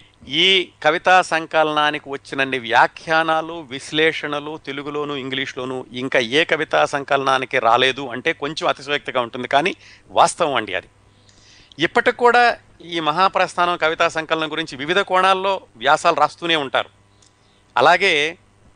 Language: Telugu